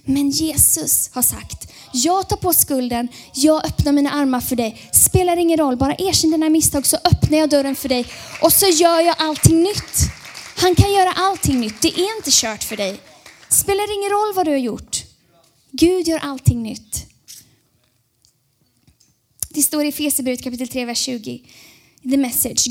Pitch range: 235-315 Hz